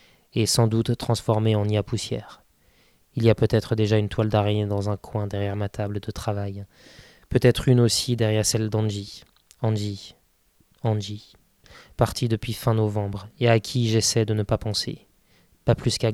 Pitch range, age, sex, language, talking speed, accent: 105-115 Hz, 20-39, male, French, 175 wpm, French